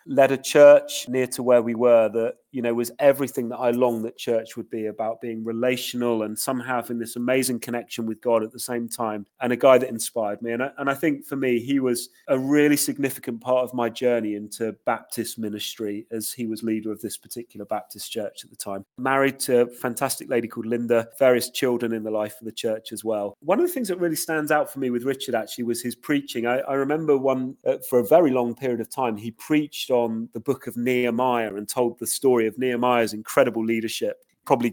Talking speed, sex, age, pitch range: 230 wpm, male, 30-49, 115-135 Hz